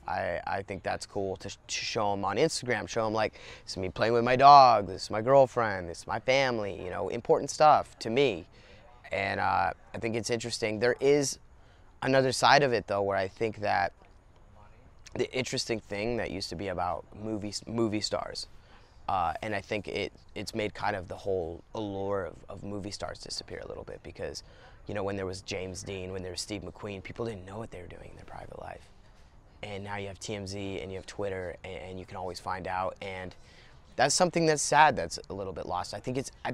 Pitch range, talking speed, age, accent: 95-115 Hz, 215 wpm, 20-39, American